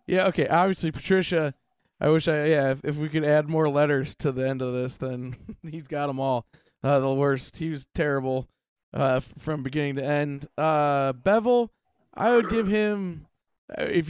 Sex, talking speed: male, 185 wpm